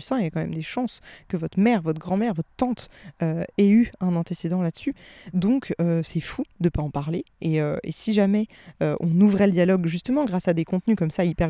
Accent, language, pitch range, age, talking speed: French, French, 165-210 Hz, 20-39, 245 wpm